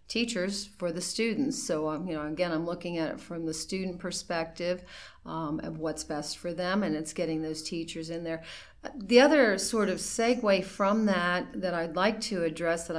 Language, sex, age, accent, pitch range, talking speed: English, female, 40-59, American, 160-195 Hz, 200 wpm